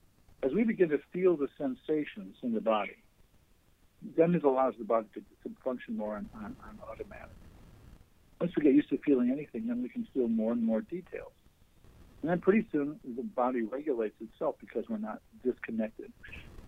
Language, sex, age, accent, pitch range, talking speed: English, male, 60-79, American, 115-175 Hz, 180 wpm